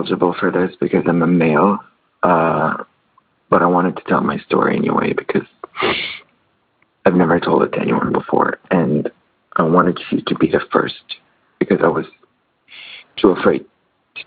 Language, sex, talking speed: English, male, 155 wpm